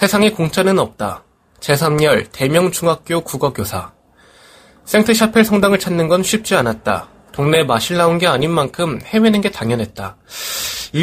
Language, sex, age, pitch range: Korean, male, 20-39, 120-195 Hz